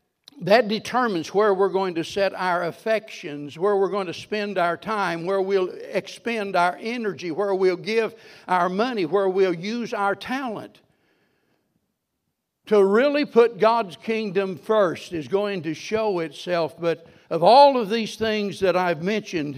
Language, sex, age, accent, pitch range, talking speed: English, male, 60-79, American, 155-195 Hz, 155 wpm